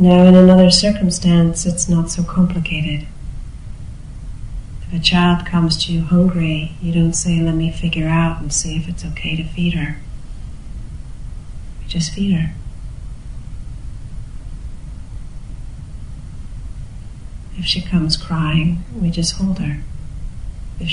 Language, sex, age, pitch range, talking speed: English, female, 40-59, 155-175 Hz, 125 wpm